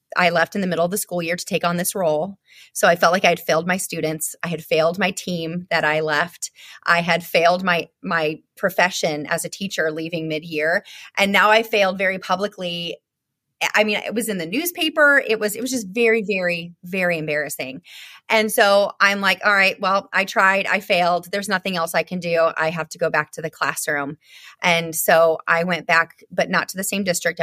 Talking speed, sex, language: 220 wpm, female, English